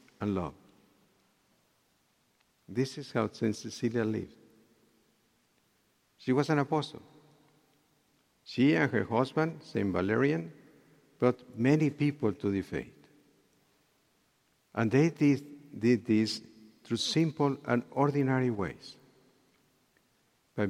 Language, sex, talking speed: English, male, 100 wpm